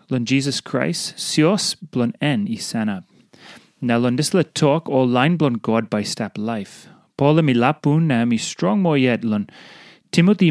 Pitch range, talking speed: 120-175 Hz, 165 wpm